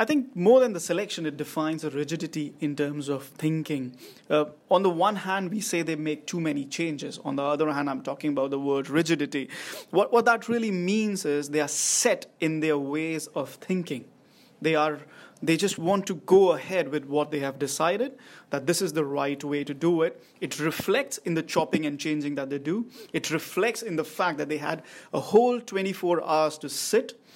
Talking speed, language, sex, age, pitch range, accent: 210 wpm, English, male, 30-49, 150-195 Hz, Indian